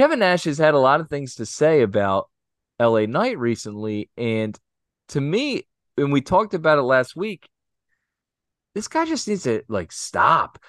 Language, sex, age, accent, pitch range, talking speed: English, male, 20-39, American, 105-145 Hz, 175 wpm